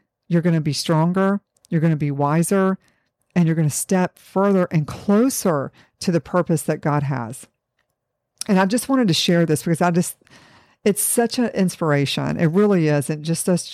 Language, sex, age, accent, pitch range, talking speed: English, female, 50-69, American, 150-190 Hz, 190 wpm